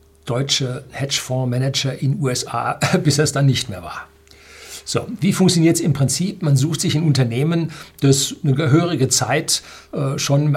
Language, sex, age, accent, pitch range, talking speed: German, male, 60-79, German, 125-150 Hz, 155 wpm